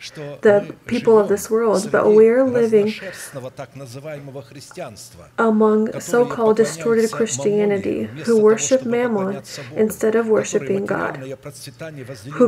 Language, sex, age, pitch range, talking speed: English, female, 20-39, 205-230 Hz, 100 wpm